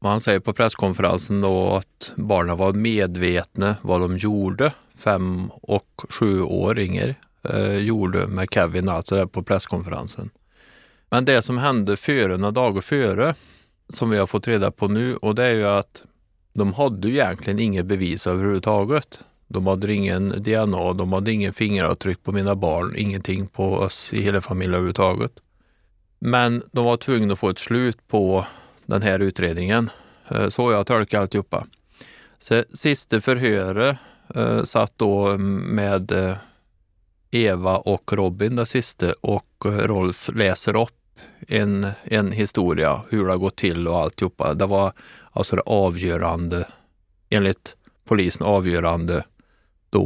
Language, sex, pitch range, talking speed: Swedish, male, 95-110 Hz, 140 wpm